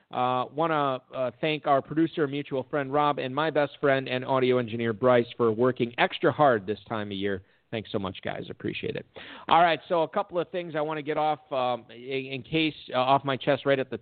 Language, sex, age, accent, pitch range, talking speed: English, male, 40-59, American, 125-160 Hz, 230 wpm